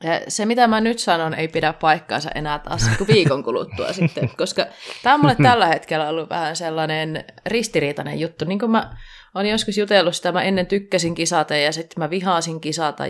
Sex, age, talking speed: female, 20-39, 190 wpm